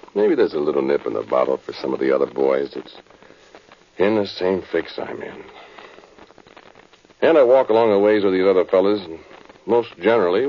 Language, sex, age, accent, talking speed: English, male, 60-79, American, 195 wpm